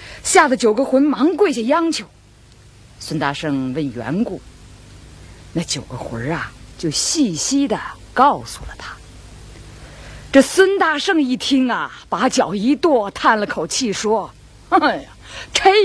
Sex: female